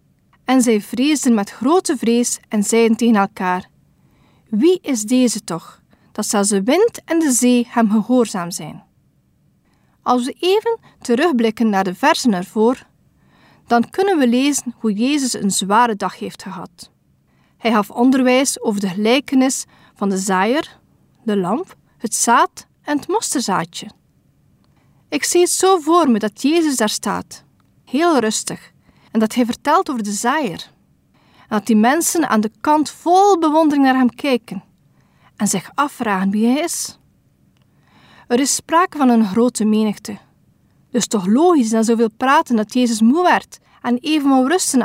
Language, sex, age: Dutch, female, 40-59